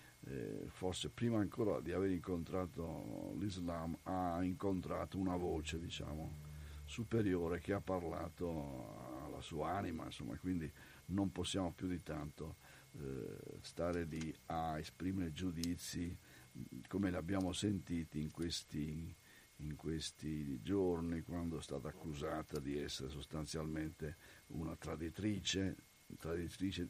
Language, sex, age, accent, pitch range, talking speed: Italian, male, 50-69, native, 80-95 Hz, 115 wpm